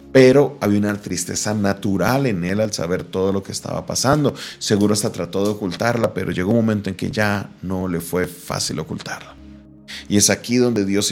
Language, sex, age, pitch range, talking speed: Spanish, male, 40-59, 90-110 Hz, 195 wpm